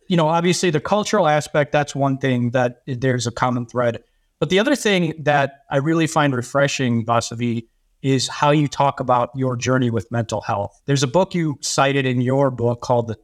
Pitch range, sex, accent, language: 120-140 Hz, male, American, English